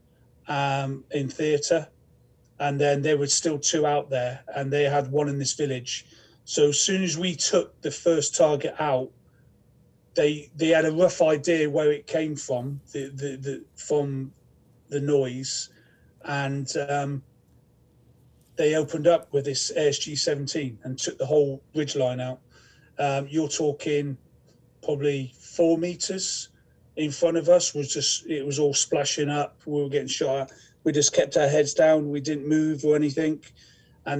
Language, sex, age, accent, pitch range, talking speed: English, male, 30-49, British, 135-155 Hz, 165 wpm